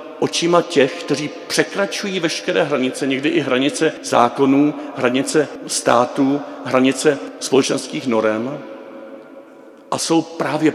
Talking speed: 100 wpm